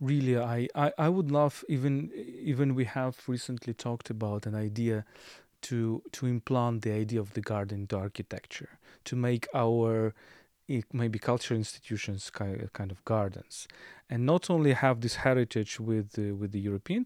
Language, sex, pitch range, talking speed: English, male, 110-135 Hz, 160 wpm